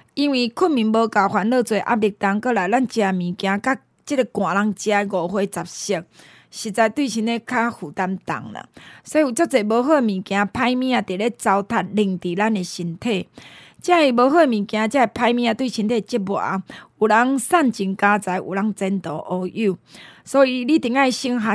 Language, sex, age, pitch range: Chinese, female, 20-39, 195-250 Hz